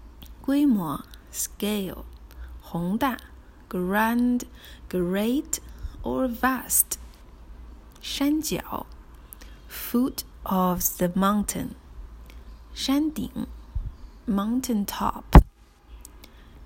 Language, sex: Chinese, female